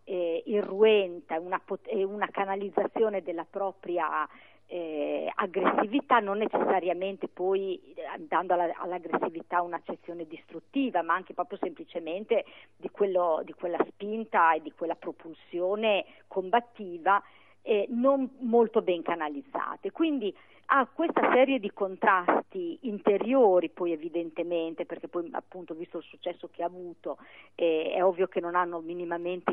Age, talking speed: 50-69, 120 wpm